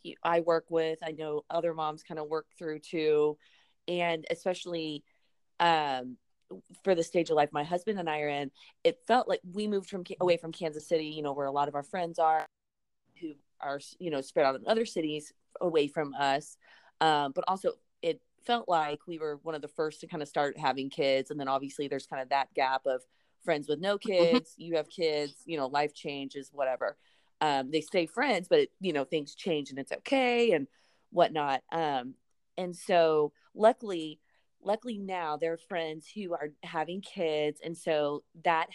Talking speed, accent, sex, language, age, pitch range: 195 wpm, American, female, English, 30-49, 150-195 Hz